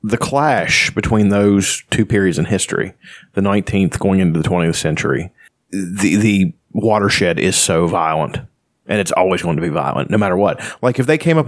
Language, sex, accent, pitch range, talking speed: English, male, American, 100-115 Hz, 190 wpm